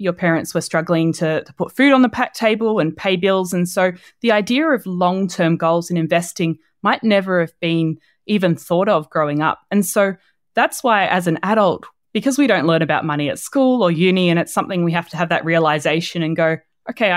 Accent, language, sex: Australian, English, female